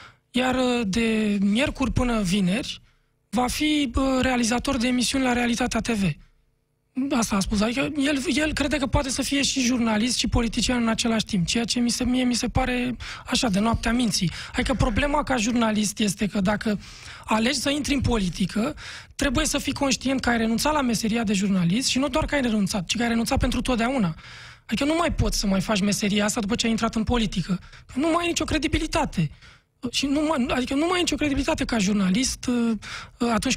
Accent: native